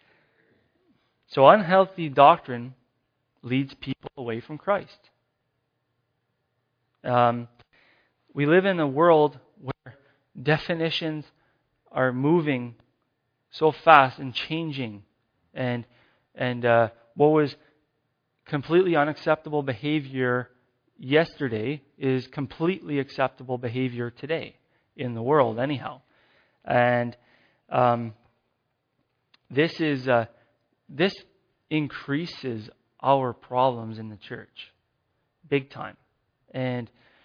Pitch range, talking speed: 120-150 Hz, 90 wpm